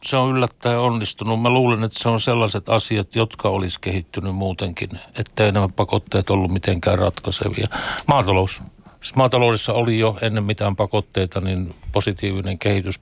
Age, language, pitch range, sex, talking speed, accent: 60-79, Finnish, 100-115 Hz, male, 145 wpm, native